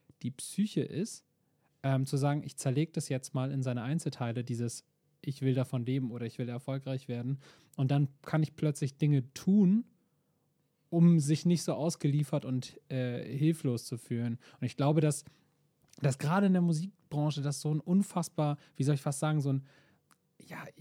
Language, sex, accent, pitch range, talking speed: German, male, German, 135-160 Hz, 180 wpm